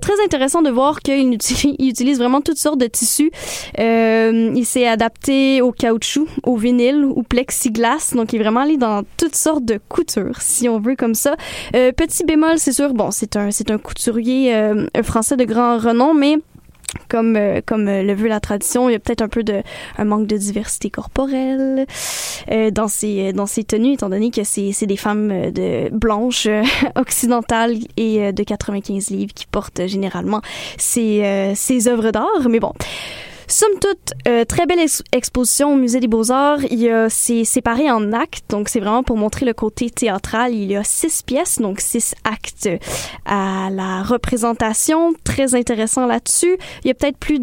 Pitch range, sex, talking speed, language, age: 220-270 Hz, female, 185 wpm, French, 10-29